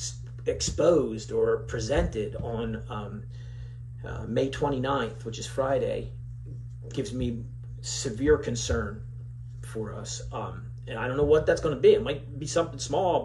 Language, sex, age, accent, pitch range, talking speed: English, male, 40-59, American, 115-140 Hz, 140 wpm